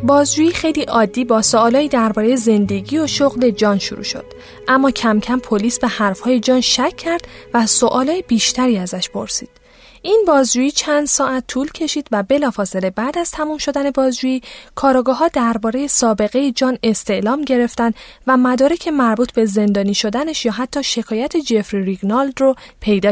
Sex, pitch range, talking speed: female, 220-275 Hz, 150 wpm